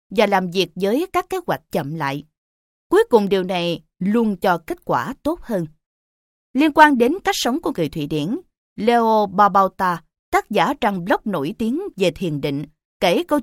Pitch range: 180-280 Hz